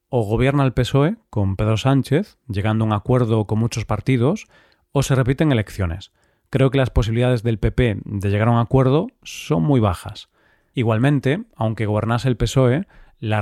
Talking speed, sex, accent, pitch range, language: 170 wpm, male, Spanish, 110-135 Hz, Spanish